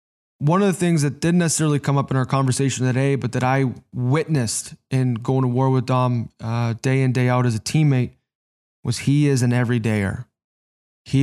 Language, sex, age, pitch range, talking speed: English, male, 20-39, 120-135 Hz, 200 wpm